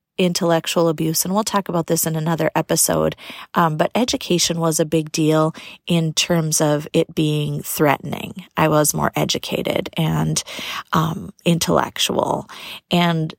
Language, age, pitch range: English, 30-49, 160-185 Hz